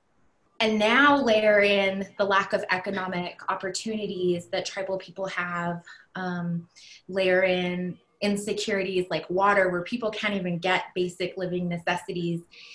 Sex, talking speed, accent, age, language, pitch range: female, 125 wpm, American, 20-39, English, 180-210 Hz